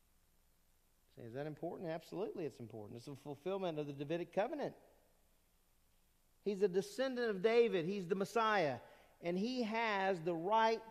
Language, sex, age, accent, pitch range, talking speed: English, male, 40-59, American, 145-210 Hz, 145 wpm